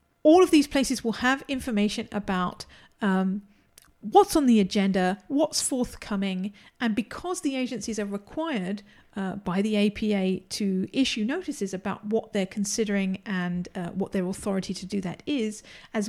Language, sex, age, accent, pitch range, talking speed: English, female, 50-69, British, 200-240 Hz, 155 wpm